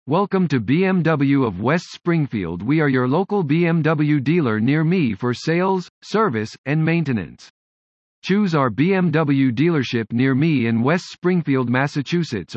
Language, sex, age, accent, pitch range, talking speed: English, male, 50-69, American, 125-175 Hz, 140 wpm